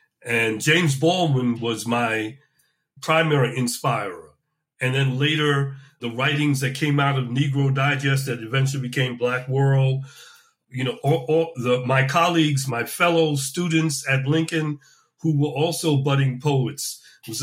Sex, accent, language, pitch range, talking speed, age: male, American, English, 130-155 Hz, 130 wpm, 40-59